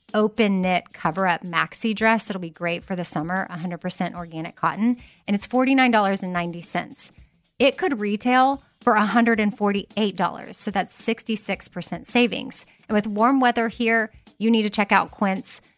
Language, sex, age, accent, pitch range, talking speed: English, female, 30-49, American, 180-230 Hz, 140 wpm